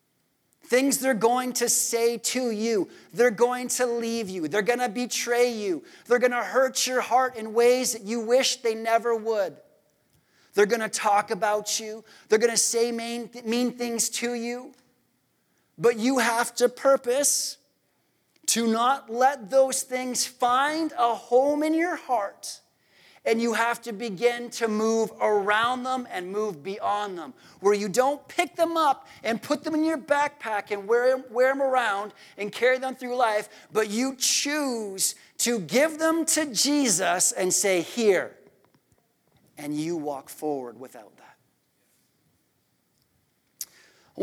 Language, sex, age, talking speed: English, male, 30-49, 155 wpm